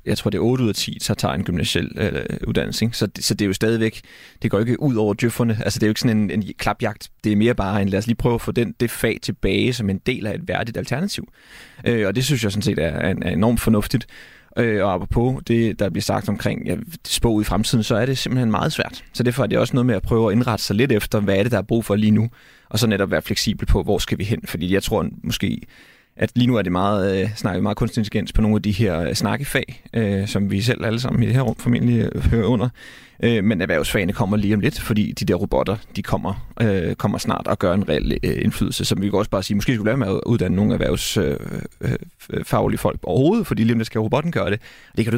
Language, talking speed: Danish, 260 wpm